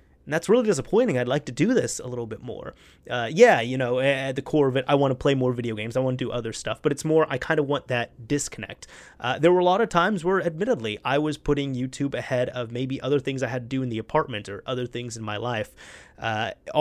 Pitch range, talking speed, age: 120-160 Hz, 270 wpm, 30-49